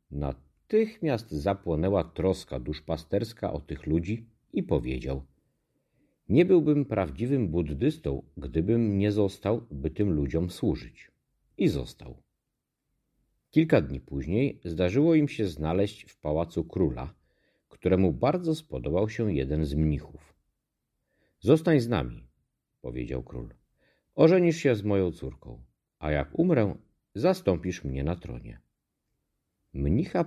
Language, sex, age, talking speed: Polish, male, 50-69, 115 wpm